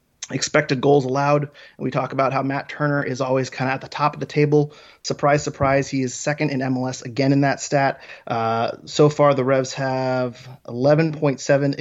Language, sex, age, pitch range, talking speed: English, male, 30-49, 130-145 Hz, 195 wpm